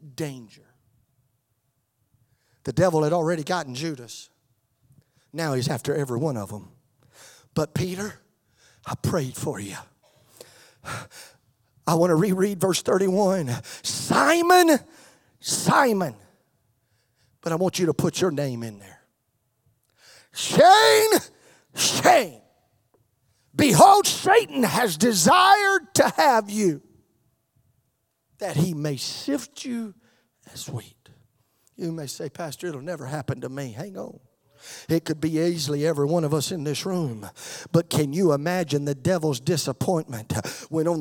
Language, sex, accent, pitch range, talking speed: English, male, American, 135-190 Hz, 125 wpm